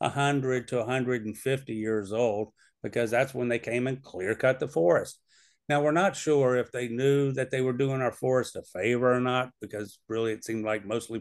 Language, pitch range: English, 110-130 Hz